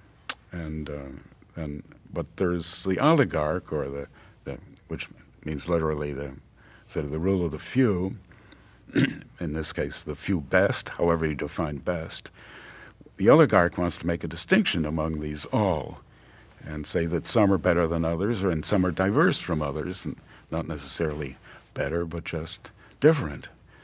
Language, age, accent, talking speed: English, 60-79, American, 160 wpm